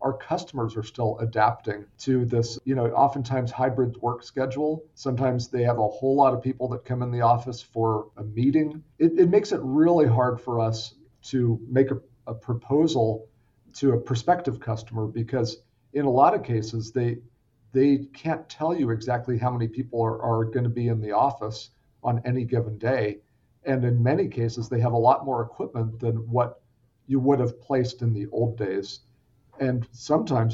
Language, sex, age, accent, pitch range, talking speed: English, male, 50-69, American, 115-135 Hz, 185 wpm